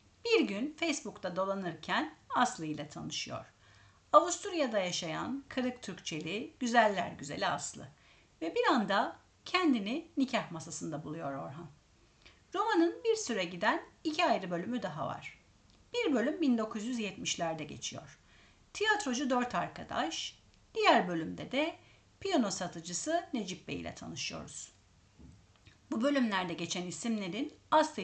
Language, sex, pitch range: Turkish, female, 180-300 Hz